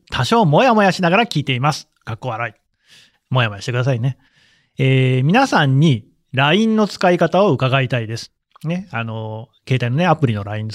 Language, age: Japanese, 30-49